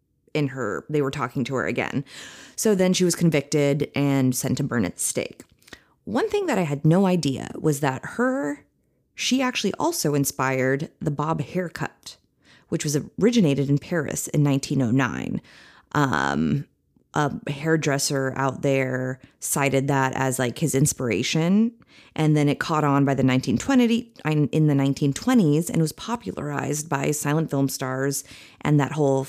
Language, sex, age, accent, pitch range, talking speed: English, female, 30-49, American, 140-165 Hz, 155 wpm